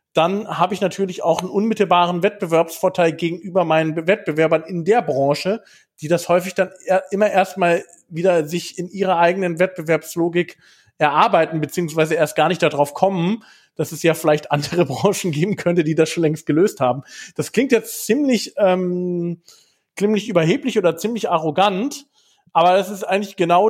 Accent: German